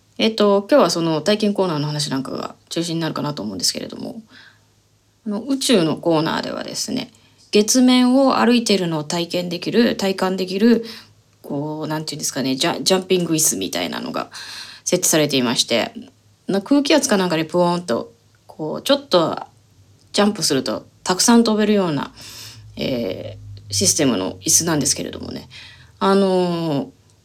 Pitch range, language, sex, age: 155-225 Hz, Japanese, female, 20-39